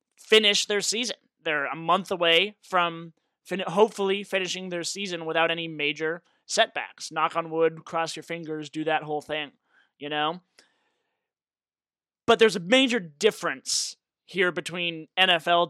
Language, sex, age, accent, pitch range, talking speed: English, male, 20-39, American, 165-210 Hz, 140 wpm